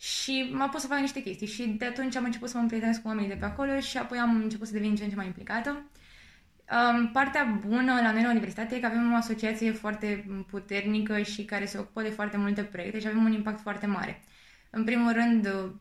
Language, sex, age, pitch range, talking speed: Romanian, female, 20-39, 200-230 Hz, 230 wpm